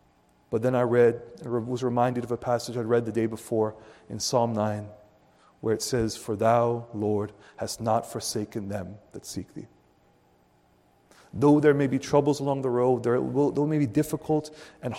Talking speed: 180 wpm